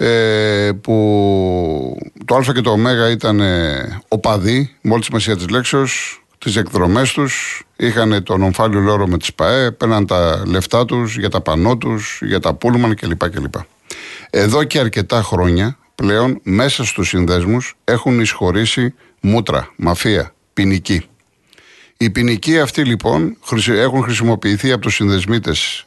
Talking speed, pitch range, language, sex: 135 wpm, 95-125 Hz, Greek, male